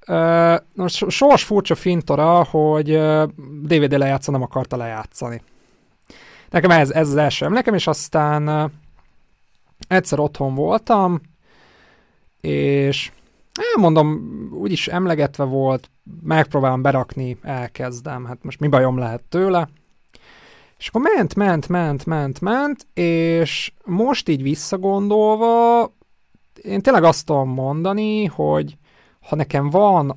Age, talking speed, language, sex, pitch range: 30-49, 115 wpm, Hungarian, male, 135-170 Hz